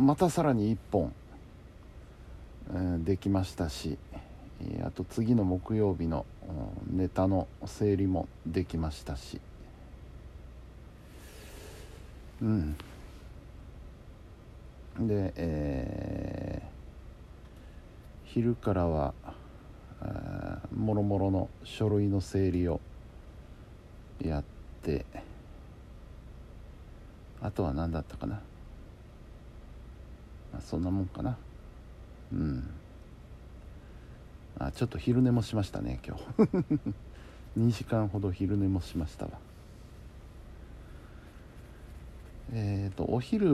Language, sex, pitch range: Japanese, male, 80-105 Hz